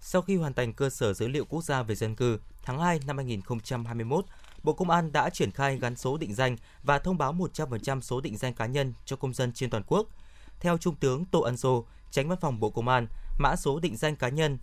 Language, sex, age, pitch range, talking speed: Vietnamese, male, 20-39, 120-160 Hz, 245 wpm